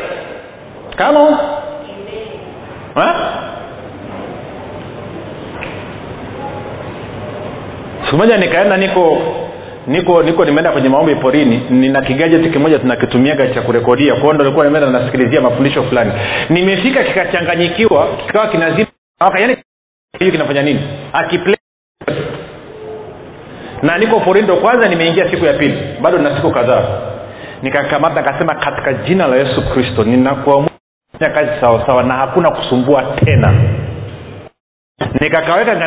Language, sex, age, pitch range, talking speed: Swahili, male, 40-59, 135-195 Hz, 105 wpm